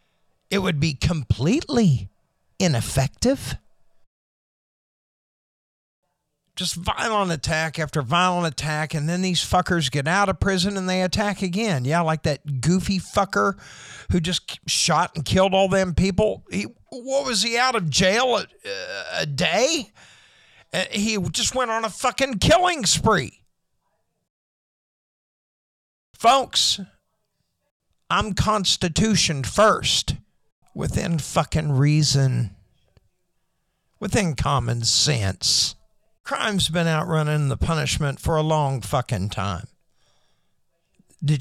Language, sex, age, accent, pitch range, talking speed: English, male, 50-69, American, 140-195 Hz, 115 wpm